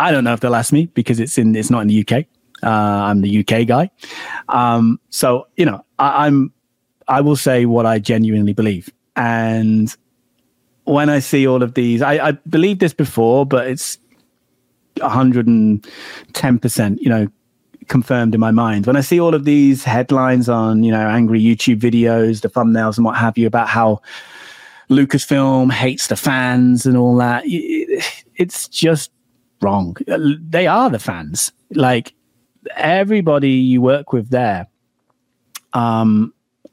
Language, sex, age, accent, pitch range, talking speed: English, male, 30-49, British, 115-140 Hz, 155 wpm